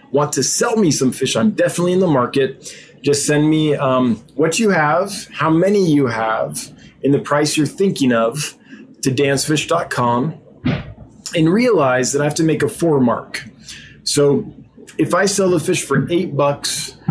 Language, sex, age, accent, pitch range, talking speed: English, male, 20-39, American, 130-165 Hz, 170 wpm